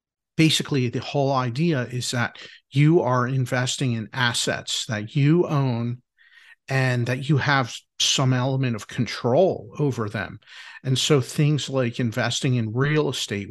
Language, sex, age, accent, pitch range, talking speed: English, male, 50-69, American, 115-145 Hz, 140 wpm